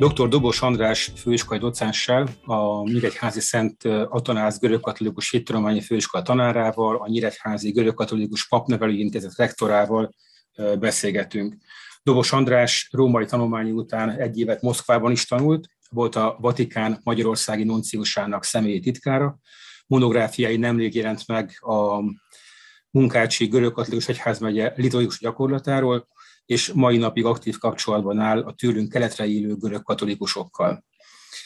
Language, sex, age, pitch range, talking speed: Hungarian, male, 30-49, 110-125 Hz, 110 wpm